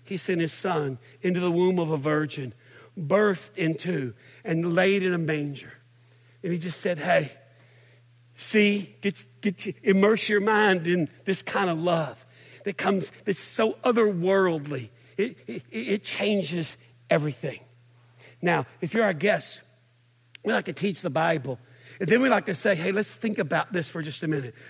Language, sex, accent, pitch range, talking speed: English, male, American, 130-200 Hz, 170 wpm